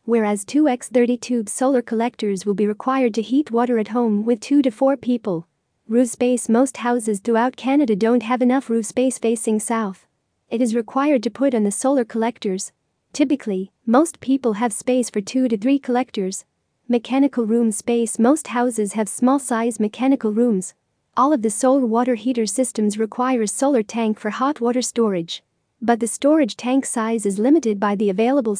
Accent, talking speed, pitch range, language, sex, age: American, 180 wpm, 220-260 Hz, English, female, 40-59